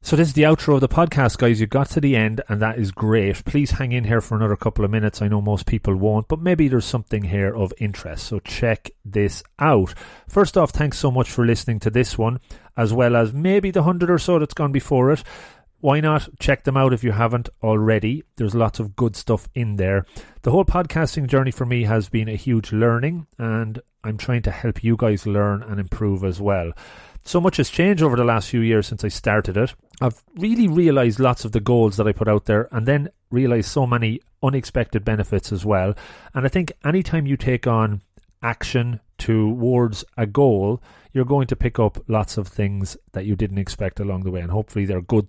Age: 30-49